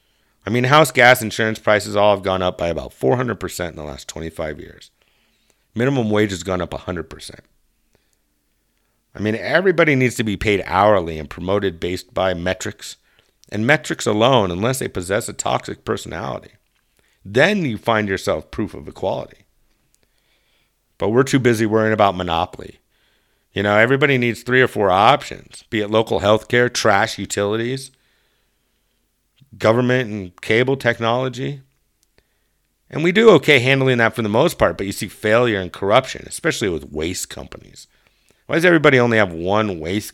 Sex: male